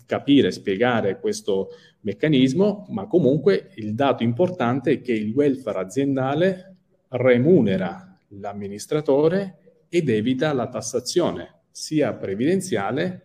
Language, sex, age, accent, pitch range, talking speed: Italian, male, 40-59, native, 110-170 Hz, 100 wpm